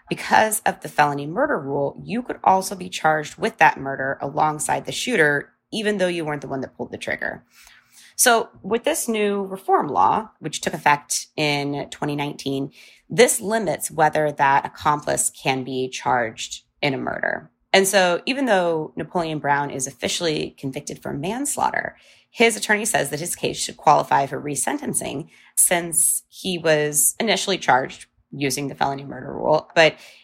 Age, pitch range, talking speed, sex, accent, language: 20-39, 145-195 Hz, 160 wpm, female, American, English